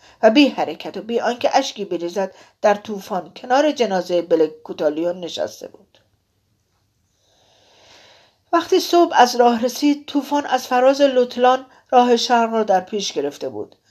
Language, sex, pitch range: Persian, female, 190-265 Hz